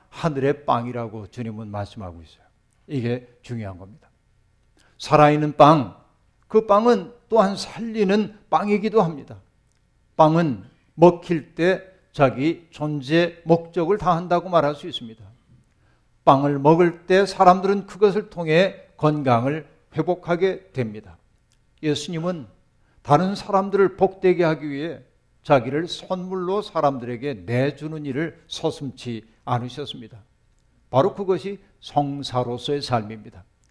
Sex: male